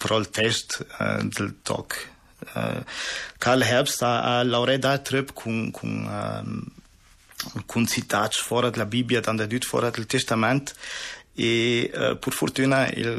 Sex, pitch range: male, 110-125 Hz